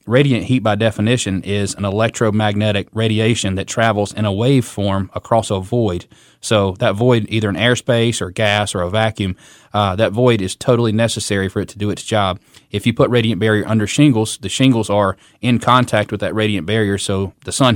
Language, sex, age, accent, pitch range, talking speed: English, male, 20-39, American, 100-115 Hz, 200 wpm